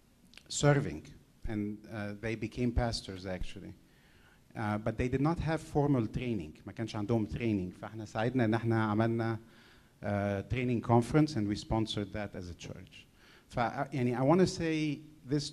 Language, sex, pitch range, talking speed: Arabic, male, 105-125 Hz, 120 wpm